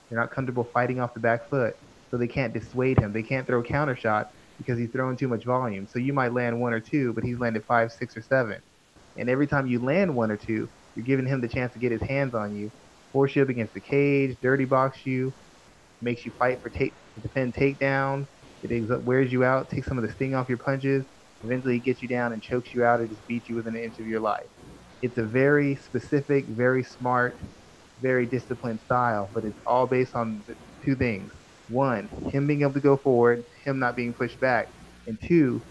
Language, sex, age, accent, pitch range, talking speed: English, male, 20-39, American, 115-135 Hz, 230 wpm